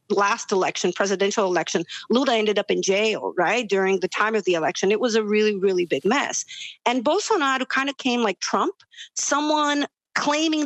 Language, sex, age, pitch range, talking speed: English, female, 40-59, 195-245 Hz, 180 wpm